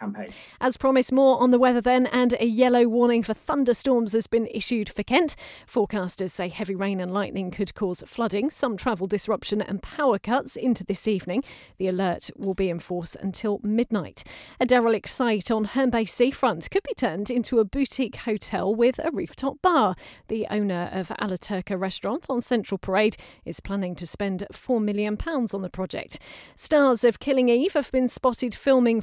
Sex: female